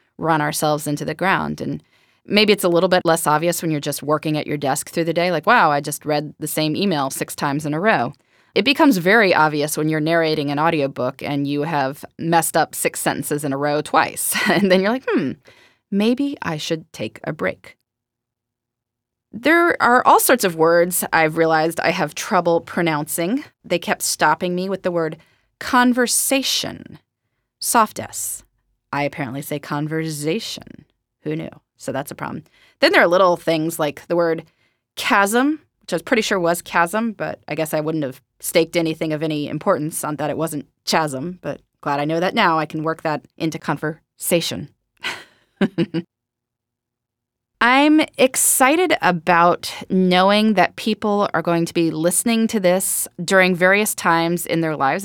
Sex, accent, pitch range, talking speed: female, American, 150-190 Hz, 175 wpm